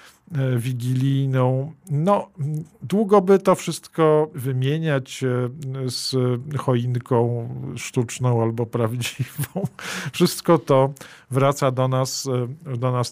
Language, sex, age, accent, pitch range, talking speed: Polish, male, 50-69, native, 120-145 Hz, 80 wpm